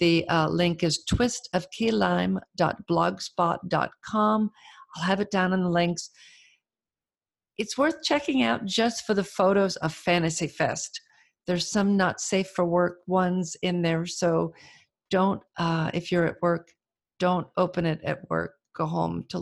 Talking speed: 145 wpm